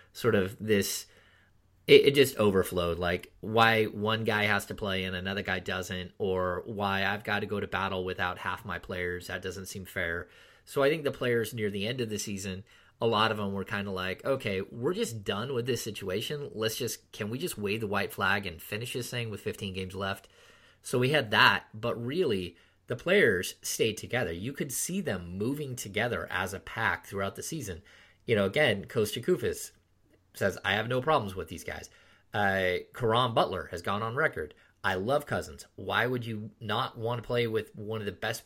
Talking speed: 210 wpm